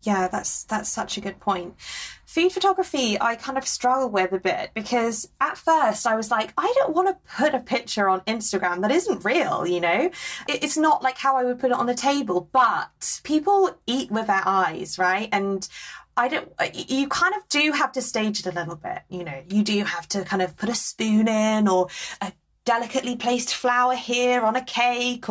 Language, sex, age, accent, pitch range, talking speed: English, female, 20-39, British, 185-255 Hz, 210 wpm